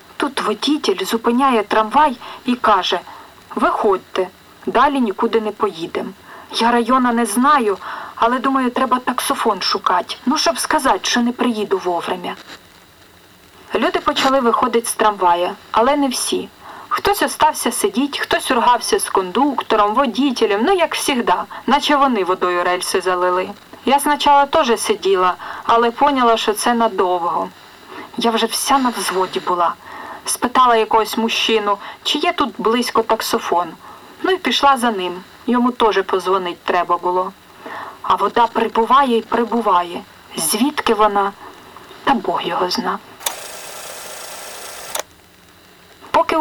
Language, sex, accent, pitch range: Ukrainian, female, native, 210-280 Hz